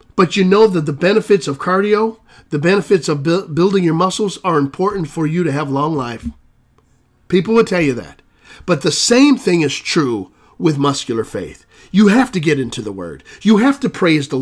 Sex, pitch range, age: male, 155-250 Hz, 40-59